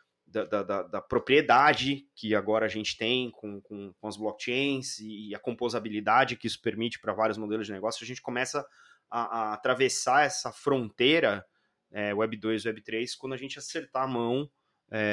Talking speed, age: 175 wpm, 20-39